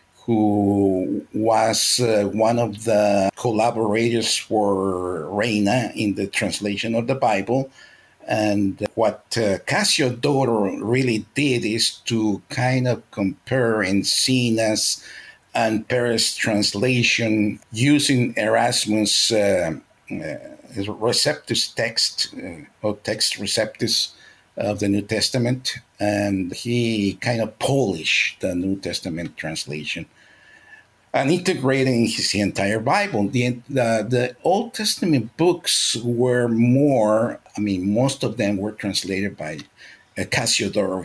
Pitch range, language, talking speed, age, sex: 100-125 Hz, English, 110 wpm, 50-69, male